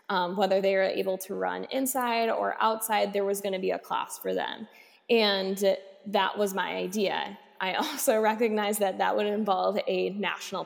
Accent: American